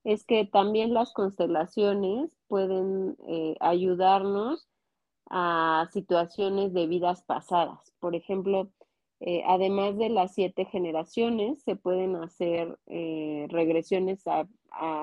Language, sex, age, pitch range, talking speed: Spanish, female, 30-49, 165-195 Hz, 110 wpm